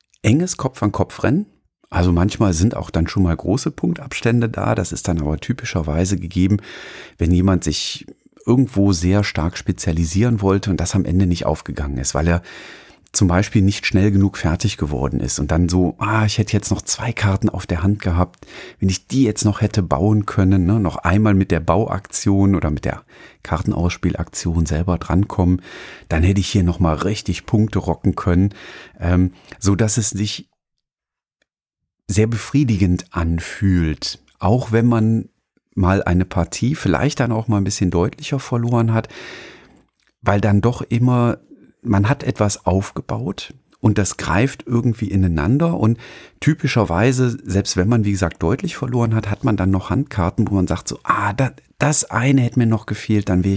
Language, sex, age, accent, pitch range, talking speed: German, male, 40-59, German, 90-110 Hz, 170 wpm